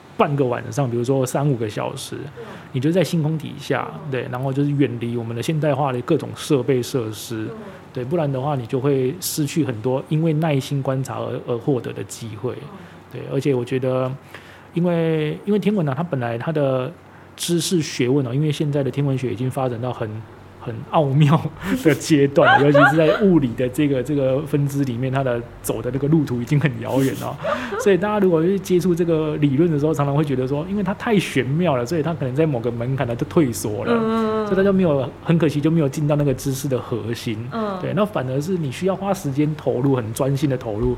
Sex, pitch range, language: male, 125-160 Hz, Chinese